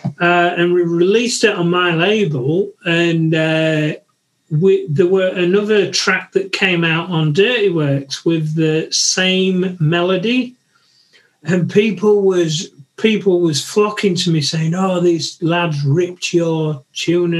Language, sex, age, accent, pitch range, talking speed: English, male, 40-59, British, 160-195 Hz, 140 wpm